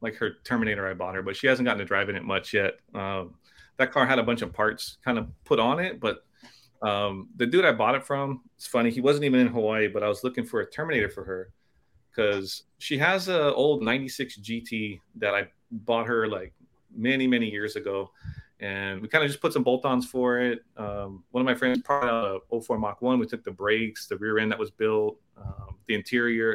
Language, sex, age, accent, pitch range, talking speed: English, male, 30-49, American, 100-125 Hz, 230 wpm